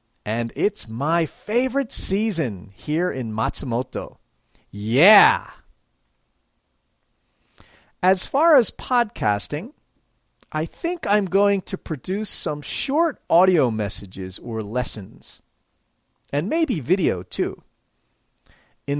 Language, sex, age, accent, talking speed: English, male, 40-59, American, 95 wpm